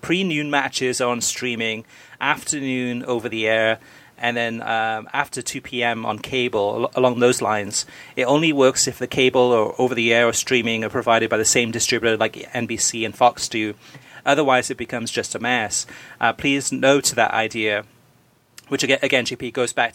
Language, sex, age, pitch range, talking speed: English, male, 30-49, 115-135 Hz, 175 wpm